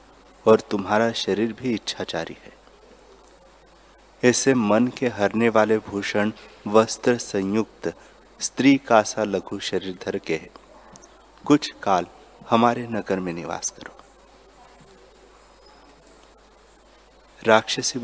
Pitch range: 100-120 Hz